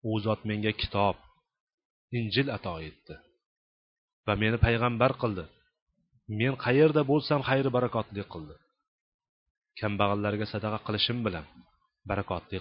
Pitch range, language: 105-135 Hz, Bulgarian